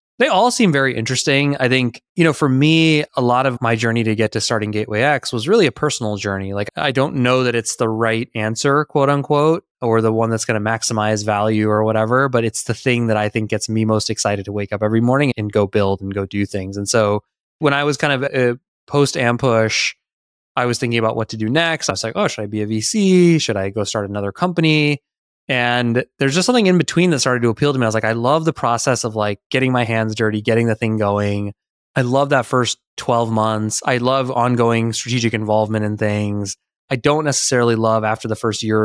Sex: male